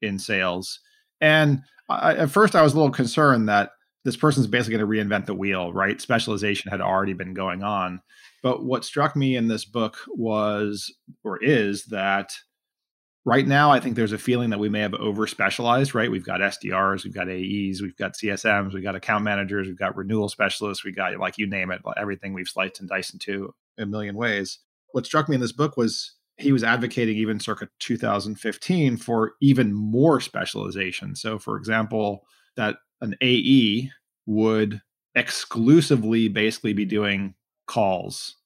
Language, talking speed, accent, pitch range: English, 175 wpm, American, 100-120 Hz